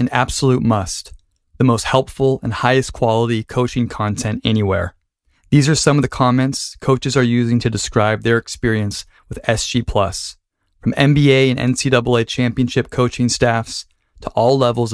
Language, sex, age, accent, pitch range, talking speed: English, male, 30-49, American, 105-125 Hz, 150 wpm